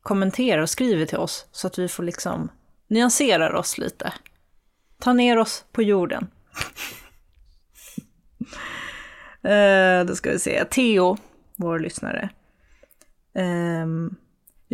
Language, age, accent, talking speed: Swedish, 30-49, native, 110 wpm